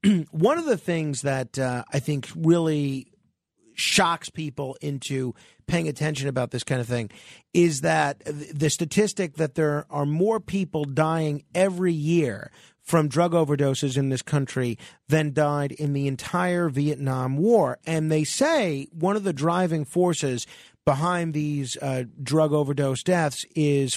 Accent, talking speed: American, 150 wpm